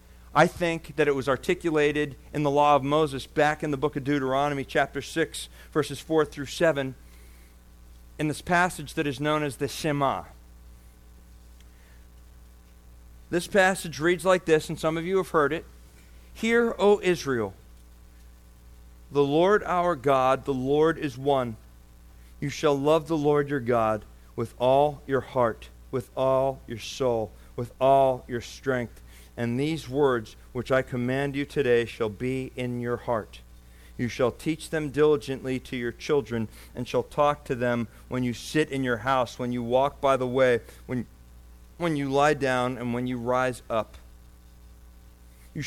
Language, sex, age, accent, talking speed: English, male, 40-59, American, 160 wpm